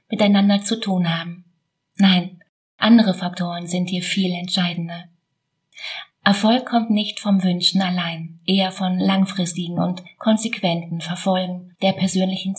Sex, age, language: female, 30-49, German